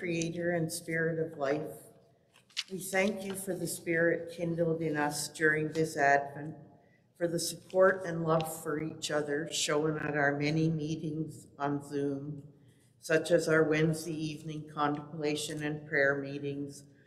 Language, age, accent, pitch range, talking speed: English, 50-69, American, 140-165 Hz, 145 wpm